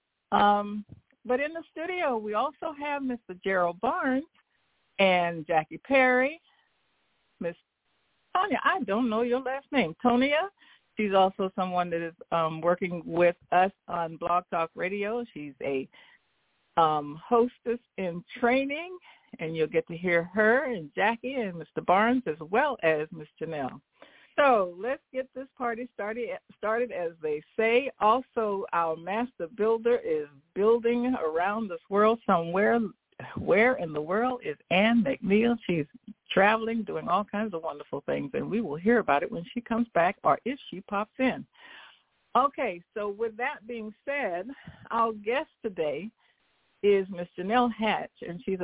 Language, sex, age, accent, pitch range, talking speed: English, female, 60-79, American, 175-250 Hz, 150 wpm